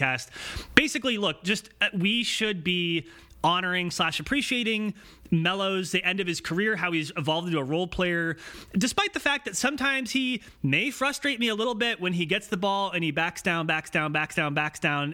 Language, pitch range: English, 160-210 Hz